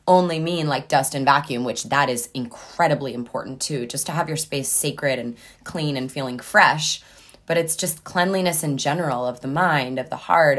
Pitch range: 135-155 Hz